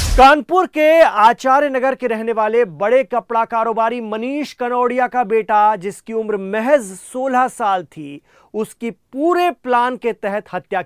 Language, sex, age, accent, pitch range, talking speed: Hindi, male, 40-59, native, 195-255 Hz, 110 wpm